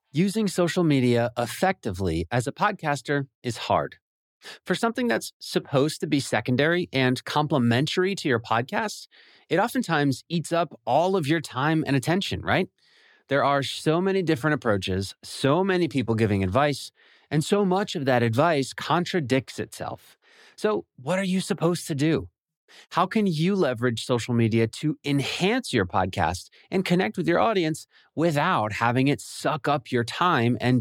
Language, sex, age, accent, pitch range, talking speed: English, male, 30-49, American, 120-175 Hz, 160 wpm